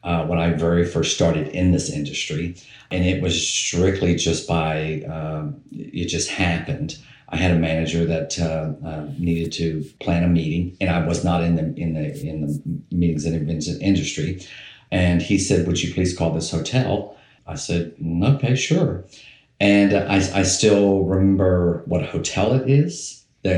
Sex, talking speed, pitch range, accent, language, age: male, 175 wpm, 85-100 Hz, American, English, 50-69